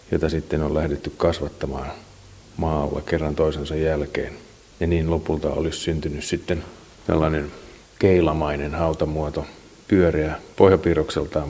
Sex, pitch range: male, 75-85 Hz